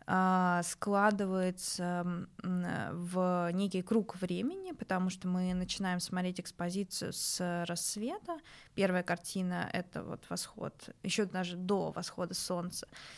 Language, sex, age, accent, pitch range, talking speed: Russian, female, 20-39, native, 180-220 Hz, 110 wpm